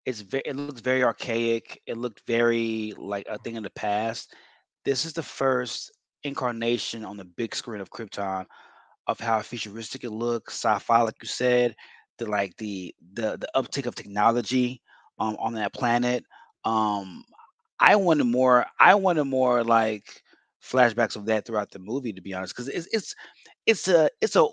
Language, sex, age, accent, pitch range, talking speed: English, male, 20-39, American, 110-135 Hz, 175 wpm